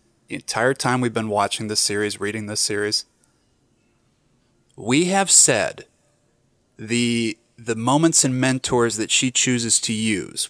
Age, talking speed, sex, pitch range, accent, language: 30-49, 130 wpm, male, 120-165 Hz, American, English